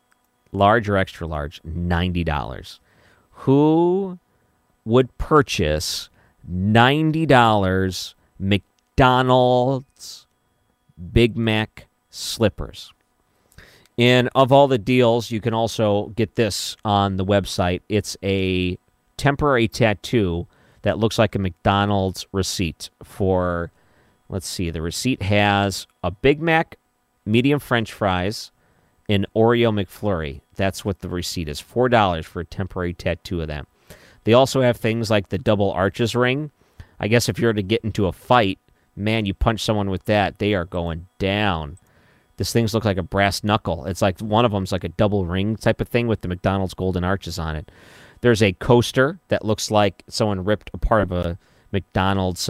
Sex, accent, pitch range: male, American, 90-115 Hz